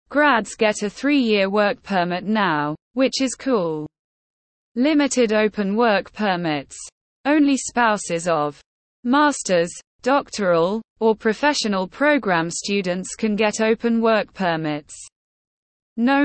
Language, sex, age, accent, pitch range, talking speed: English, female, 20-39, British, 180-255 Hz, 105 wpm